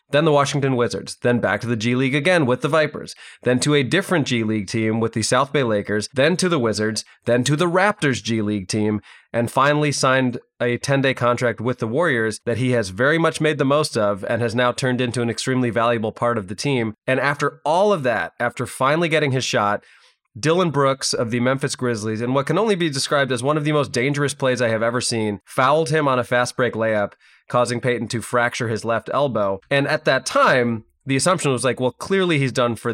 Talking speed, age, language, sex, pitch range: 230 wpm, 20-39, English, male, 115-145 Hz